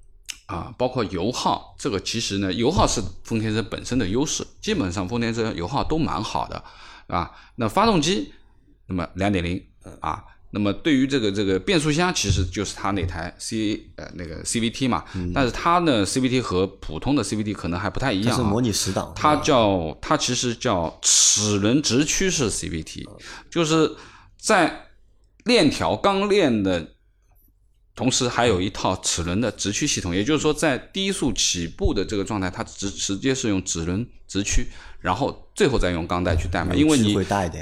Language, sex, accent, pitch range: Chinese, male, native, 95-125 Hz